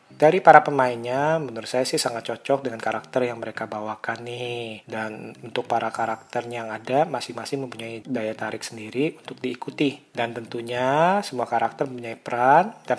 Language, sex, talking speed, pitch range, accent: Indonesian, male, 155 wpm, 115-135 Hz, native